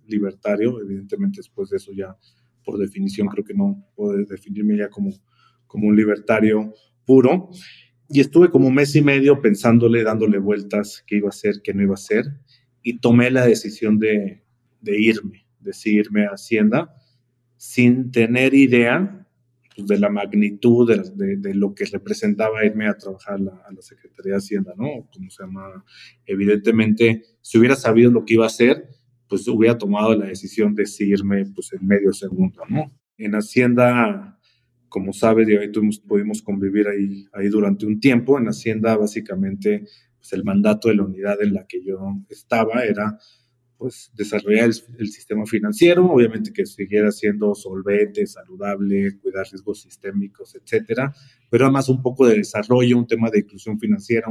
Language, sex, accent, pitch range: Spanish, male, Mexican, 105-135 Hz